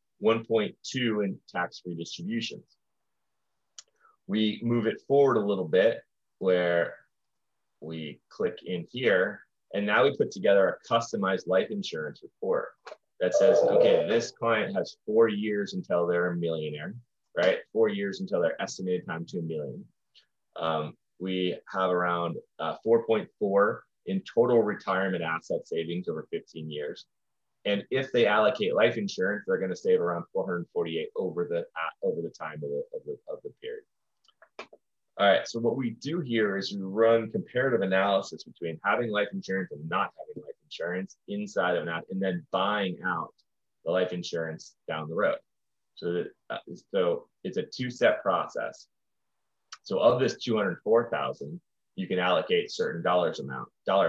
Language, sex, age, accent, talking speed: English, male, 30-49, American, 155 wpm